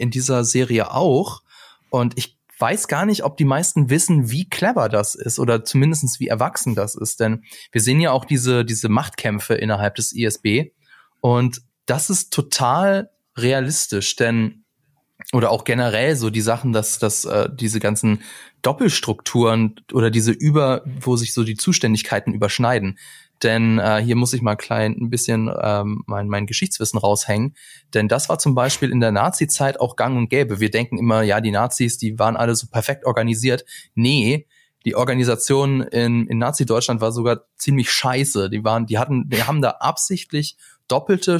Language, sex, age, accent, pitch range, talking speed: German, male, 20-39, German, 110-140 Hz, 170 wpm